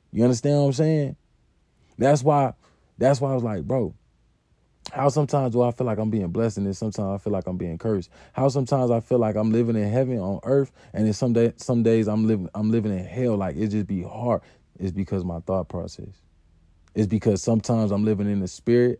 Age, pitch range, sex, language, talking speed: 20-39, 100-125 Hz, male, English, 225 wpm